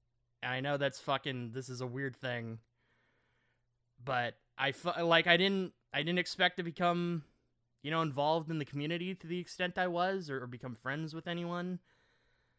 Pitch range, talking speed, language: 120-170 Hz, 175 wpm, English